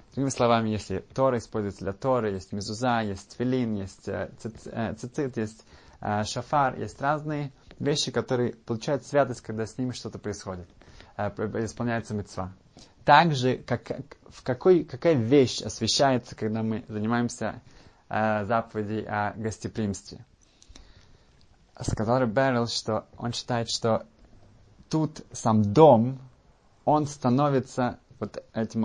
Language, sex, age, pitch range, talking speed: Russian, male, 20-39, 105-130 Hz, 125 wpm